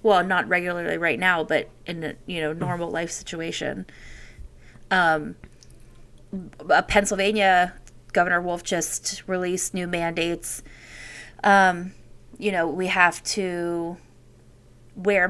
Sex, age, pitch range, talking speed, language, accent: female, 20-39, 170-195 Hz, 115 wpm, English, American